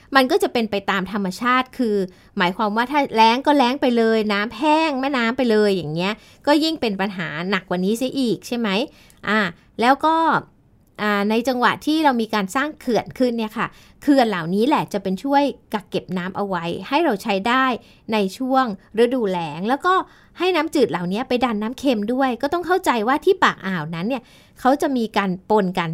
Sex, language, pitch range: female, Thai, 200-270 Hz